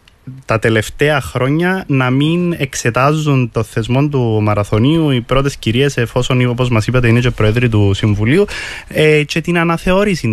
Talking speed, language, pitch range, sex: 145 wpm, Greek, 110-135 Hz, male